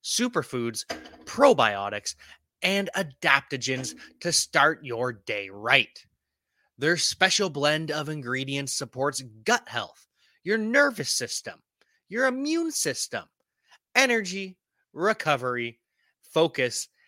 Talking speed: 90 wpm